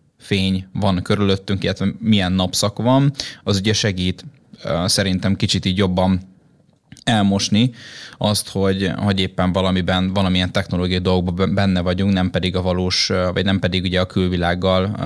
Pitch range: 95-105 Hz